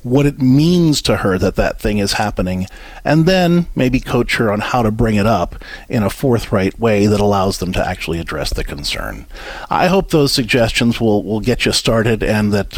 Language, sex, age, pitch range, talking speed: English, male, 50-69, 105-160 Hz, 205 wpm